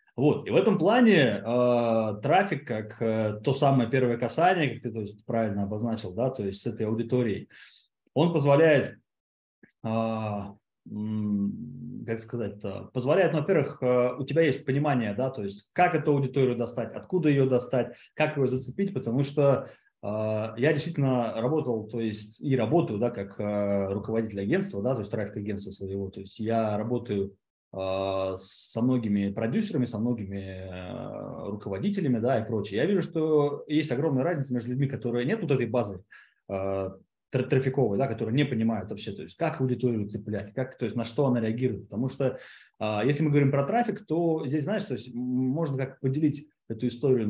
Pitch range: 110-145 Hz